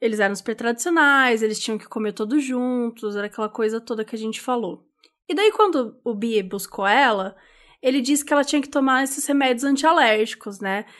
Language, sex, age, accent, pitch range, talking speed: Portuguese, female, 20-39, Brazilian, 225-310 Hz, 195 wpm